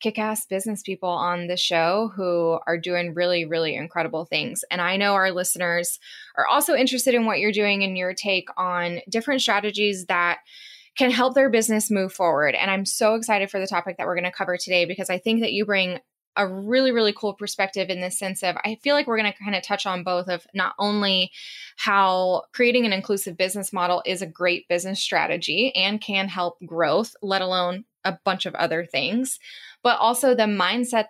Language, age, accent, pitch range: English, 10-29, American, 180-225 Hz